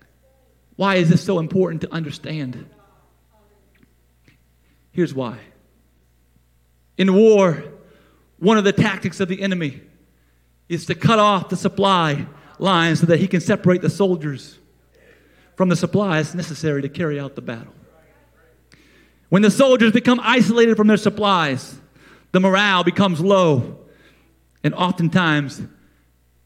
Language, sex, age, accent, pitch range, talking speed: English, male, 40-59, American, 130-200 Hz, 125 wpm